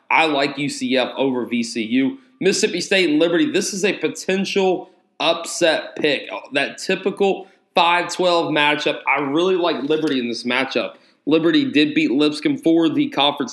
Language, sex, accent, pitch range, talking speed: English, male, American, 140-190 Hz, 150 wpm